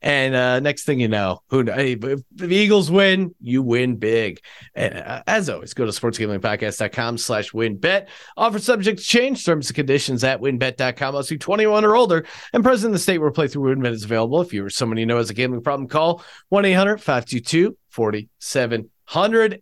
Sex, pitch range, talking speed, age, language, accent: male, 125-175 Hz, 190 wpm, 40-59, English, American